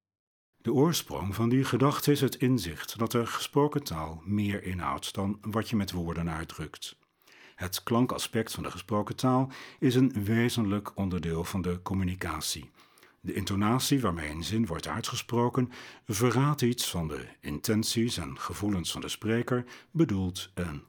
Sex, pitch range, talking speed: male, 90-120 Hz, 150 wpm